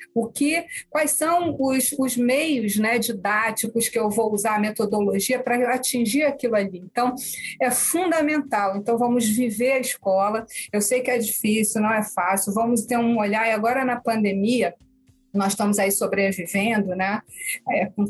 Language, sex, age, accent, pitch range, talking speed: Portuguese, female, 40-59, Brazilian, 205-235 Hz, 155 wpm